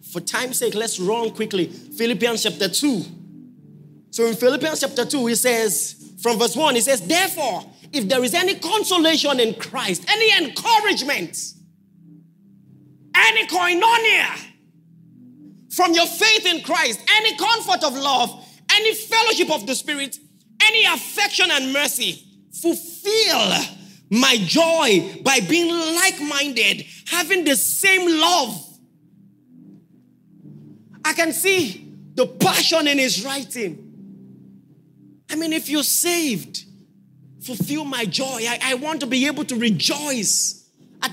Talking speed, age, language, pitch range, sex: 125 wpm, 30-49, English, 215-320 Hz, male